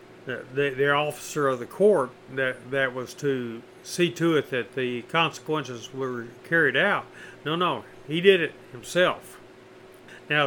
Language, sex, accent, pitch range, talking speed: English, male, American, 130-175 Hz, 155 wpm